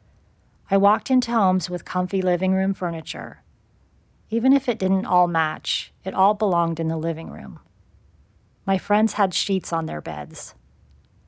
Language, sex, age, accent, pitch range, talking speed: English, female, 40-59, American, 160-195 Hz, 155 wpm